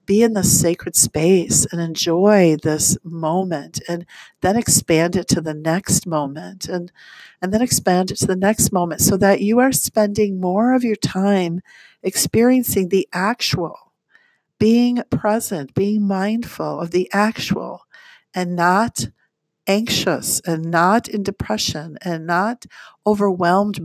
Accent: American